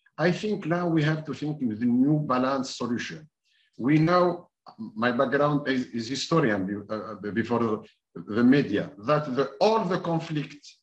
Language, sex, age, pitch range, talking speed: Arabic, male, 50-69, 130-165 Hz, 150 wpm